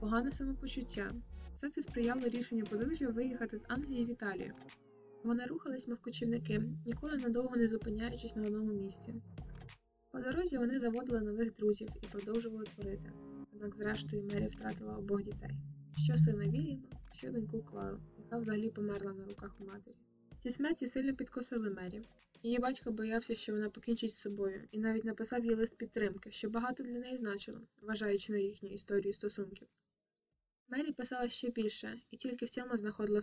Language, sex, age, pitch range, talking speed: Ukrainian, female, 20-39, 205-240 Hz, 160 wpm